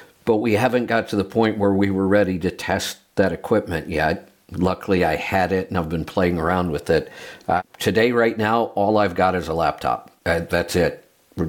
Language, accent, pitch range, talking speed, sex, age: English, American, 90-105 Hz, 215 wpm, male, 50-69